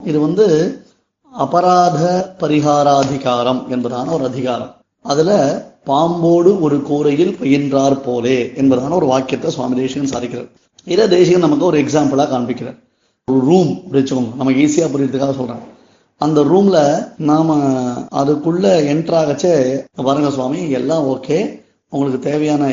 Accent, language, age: native, Tamil, 20-39